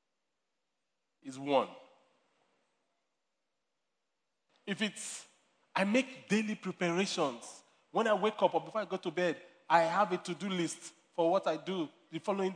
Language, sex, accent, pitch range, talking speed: English, male, Nigerian, 165-225 Hz, 140 wpm